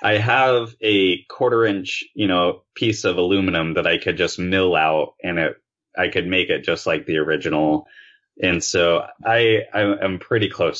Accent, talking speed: American, 170 wpm